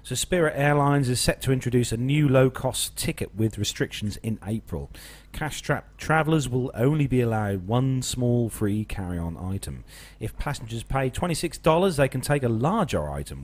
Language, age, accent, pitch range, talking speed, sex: English, 40-59, British, 100-135 Hz, 160 wpm, male